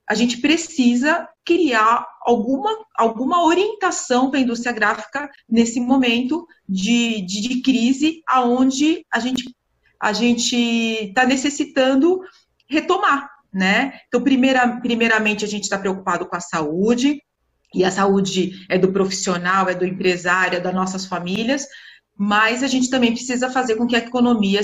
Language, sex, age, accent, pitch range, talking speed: Portuguese, female, 30-49, Brazilian, 205-270 Hz, 145 wpm